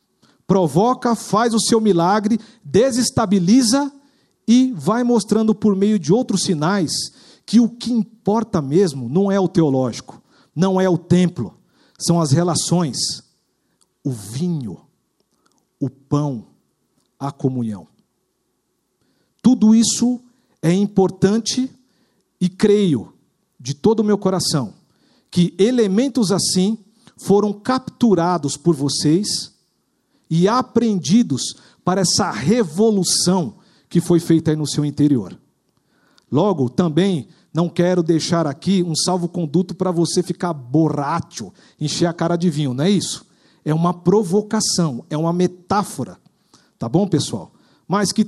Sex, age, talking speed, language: male, 50-69, 120 wpm, Portuguese